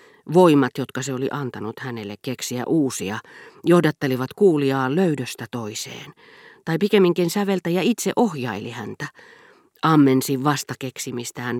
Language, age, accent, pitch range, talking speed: Finnish, 40-59, native, 120-170 Hz, 105 wpm